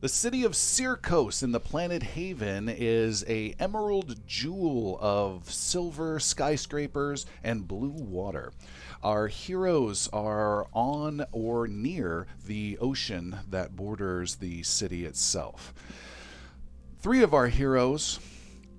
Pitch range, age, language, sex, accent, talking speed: 90-135 Hz, 40-59, English, male, American, 110 wpm